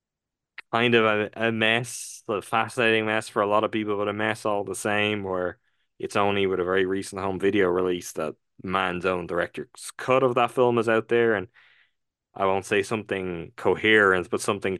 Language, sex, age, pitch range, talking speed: English, male, 20-39, 95-115 Hz, 190 wpm